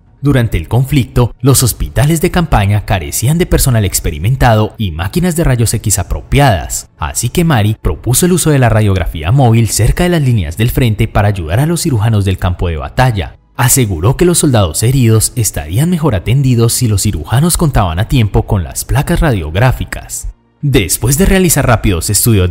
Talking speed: 175 wpm